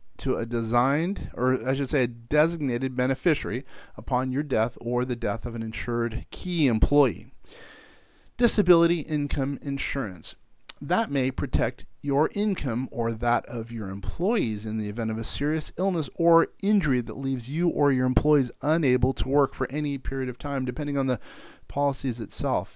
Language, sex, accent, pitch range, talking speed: English, male, American, 115-150 Hz, 165 wpm